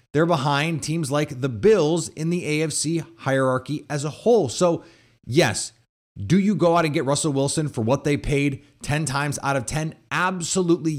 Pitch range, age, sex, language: 135-175 Hz, 30-49, male, English